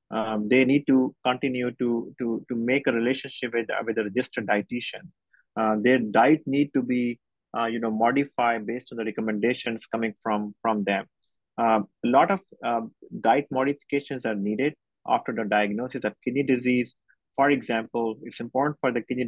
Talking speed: 175 wpm